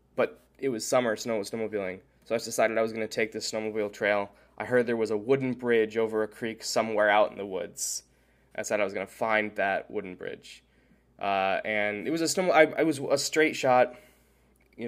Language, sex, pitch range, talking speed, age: English, male, 105-130 Hz, 225 wpm, 20-39